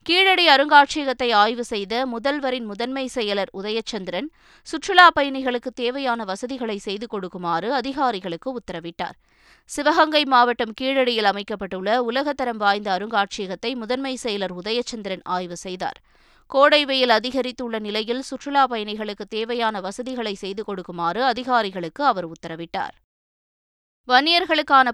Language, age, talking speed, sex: Tamil, 20-39, 100 wpm, female